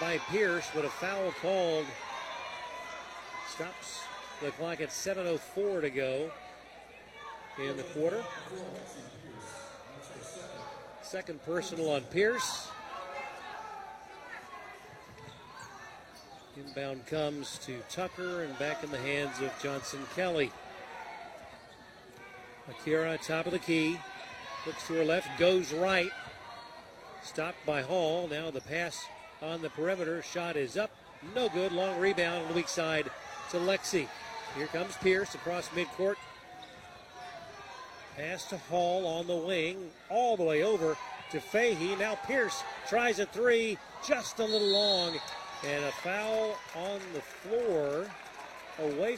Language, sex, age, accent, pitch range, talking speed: English, male, 40-59, American, 155-210 Hz, 120 wpm